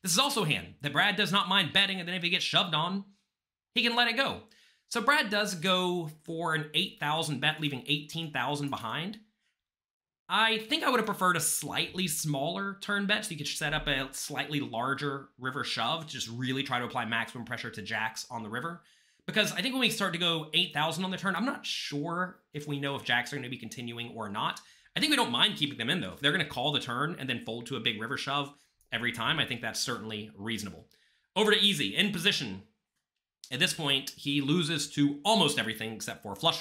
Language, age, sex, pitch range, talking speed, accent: English, 30-49, male, 130-185 Hz, 235 wpm, American